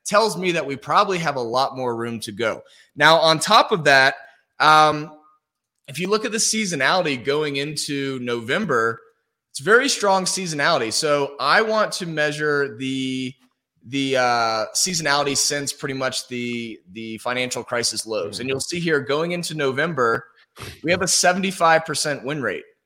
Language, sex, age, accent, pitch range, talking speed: English, male, 20-39, American, 125-170 Hz, 160 wpm